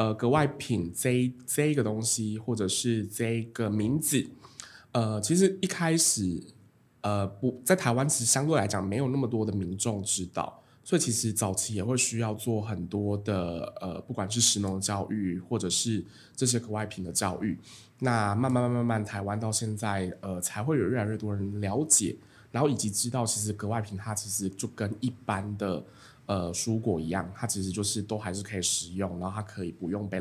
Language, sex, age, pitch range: Chinese, male, 20-39, 100-125 Hz